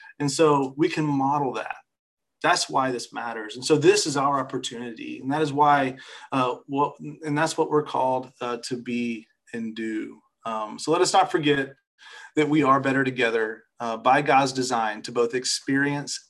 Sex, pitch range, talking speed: male, 120-150 Hz, 180 wpm